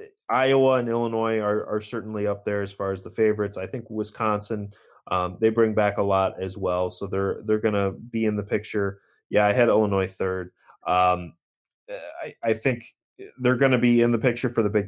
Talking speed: 210 wpm